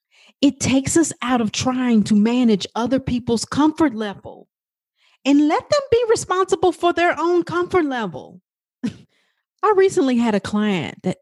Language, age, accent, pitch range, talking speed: English, 40-59, American, 175-255 Hz, 150 wpm